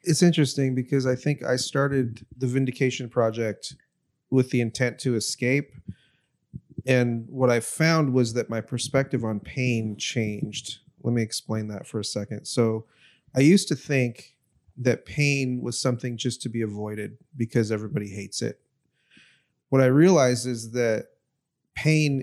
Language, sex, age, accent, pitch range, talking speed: English, male, 30-49, American, 115-135 Hz, 150 wpm